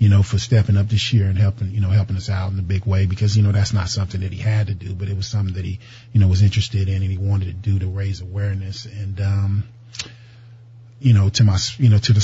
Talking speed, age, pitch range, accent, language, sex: 285 wpm, 30-49, 95-110 Hz, American, English, male